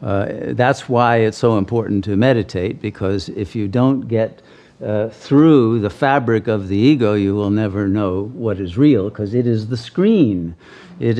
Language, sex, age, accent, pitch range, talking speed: English, male, 50-69, American, 115-150 Hz, 175 wpm